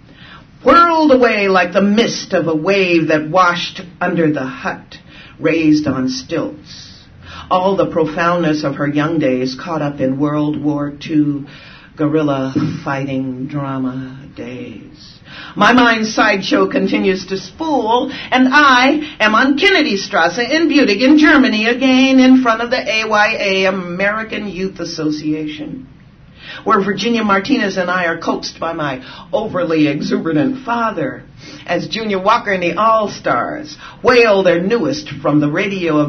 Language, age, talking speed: English, 50-69, 135 wpm